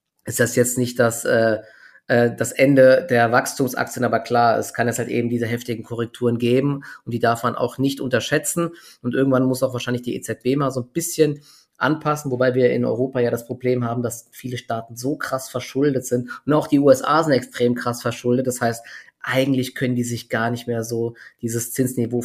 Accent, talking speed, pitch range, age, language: German, 200 wpm, 115-130 Hz, 20-39, German